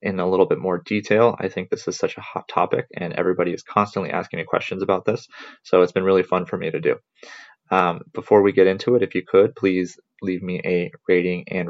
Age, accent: 20-39, American